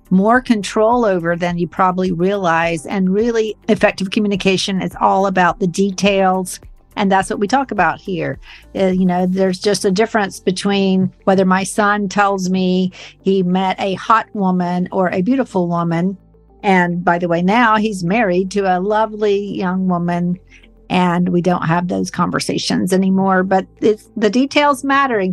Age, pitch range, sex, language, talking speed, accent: 50-69, 185-220 Hz, female, English, 165 wpm, American